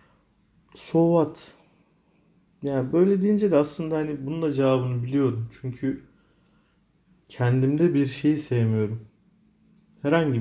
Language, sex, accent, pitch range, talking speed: Turkish, male, native, 120-180 Hz, 105 wpm